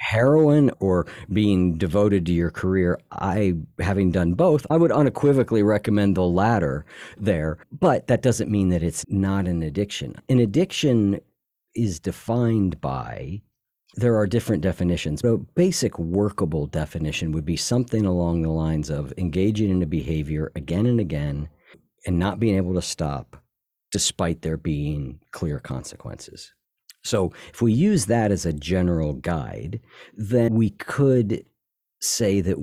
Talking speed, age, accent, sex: 145 wpm, 50-69, American, male